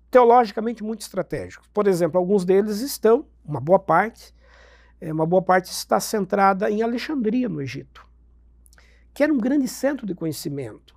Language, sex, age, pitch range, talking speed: Portuguese, male, 60-79, 155-215 Hz, 150 wpm